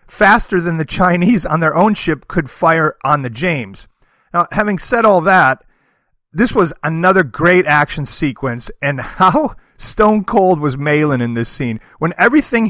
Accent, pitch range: American, 135-185 Hz